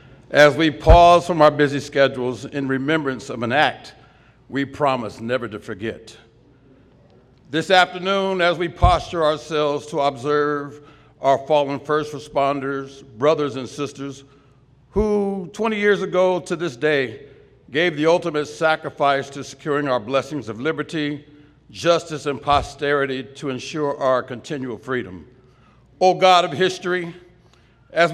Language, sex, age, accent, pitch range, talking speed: English, male, 60-79, American, 140-180 Hz, 130 wpm